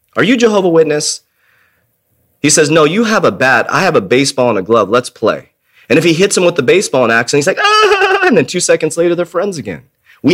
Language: English